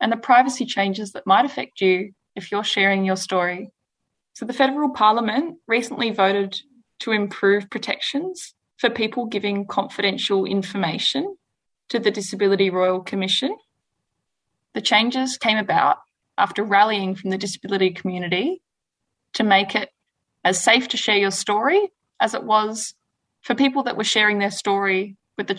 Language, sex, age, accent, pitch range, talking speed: English, female, 20-39, Australian, 195-235 Hz, 150 wpm